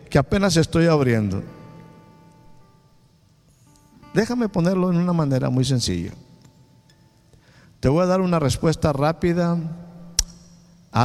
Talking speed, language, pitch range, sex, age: 105 wpm, Spanish, 135-175 Hz, male, 50-69